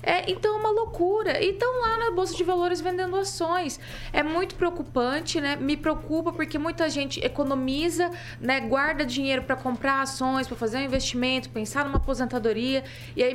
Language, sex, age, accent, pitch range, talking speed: Portuguese, female, 20-39, Brazilian, 225-295 Hz, 175 wpm